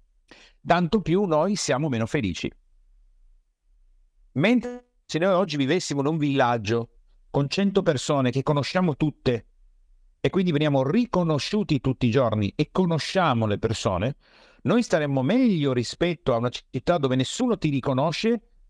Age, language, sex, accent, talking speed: 50-69, Italian, male, native, 135 wpm